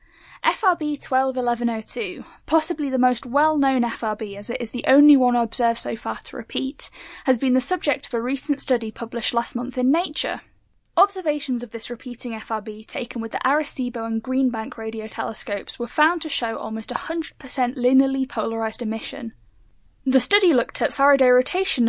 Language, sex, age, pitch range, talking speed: English, female, 10-29, 230-290 Hz, 160 wpm